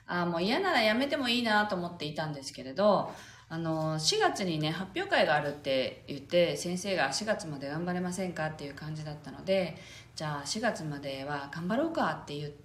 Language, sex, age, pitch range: Japanese, female, 40-59, 155-235 Hz